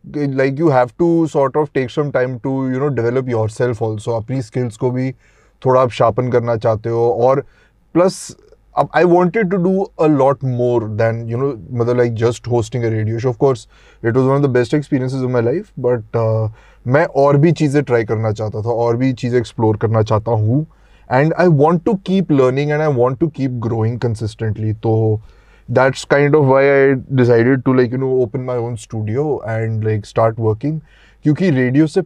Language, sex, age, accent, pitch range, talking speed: Hindi, male, 20-39, native, 115-135 Hz, 200 wpm